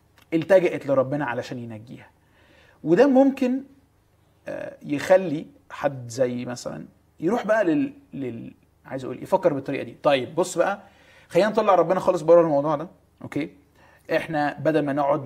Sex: male